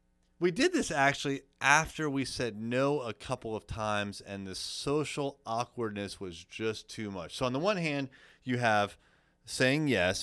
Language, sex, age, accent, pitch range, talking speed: English, male, 30-49, American, 95-135 Hz, 170 wpm